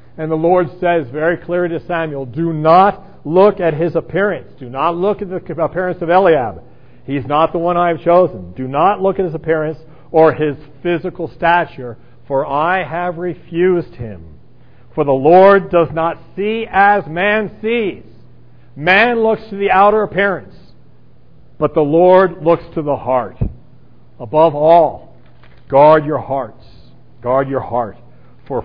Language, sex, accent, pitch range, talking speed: English, male, American, 125-175 Hz, 160 wpm